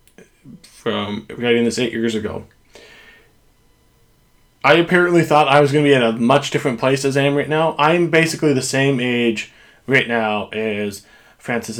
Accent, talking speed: American, 170 wpm